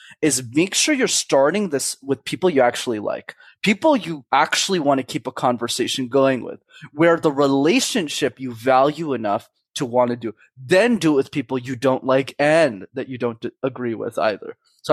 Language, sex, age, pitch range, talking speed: English, male, 20-39, 130-175 Hz, 190 wpm